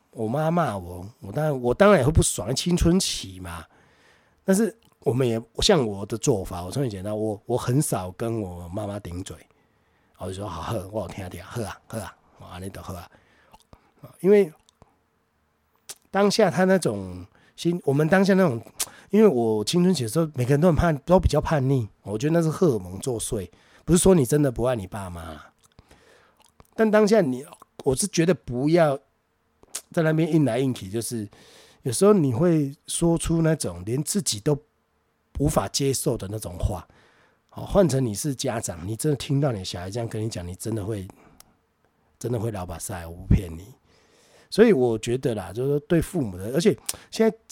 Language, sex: Chinese, male